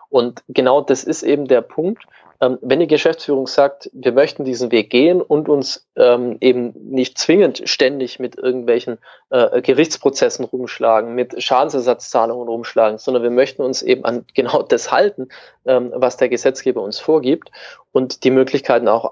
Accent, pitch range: German, 125-170 Hz